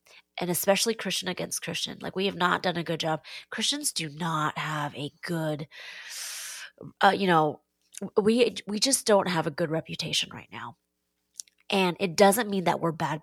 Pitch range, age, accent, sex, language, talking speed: 165-205 Hz, 30-49, American, female, English, 175 wpm